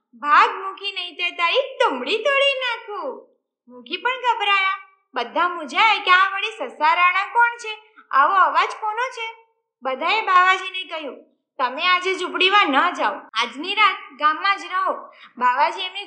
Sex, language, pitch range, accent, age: female, Gujarati, 295-410 Hz, native, 20-39